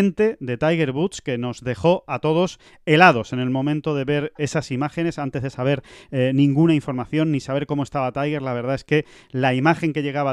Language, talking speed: Spanish, 205 wpm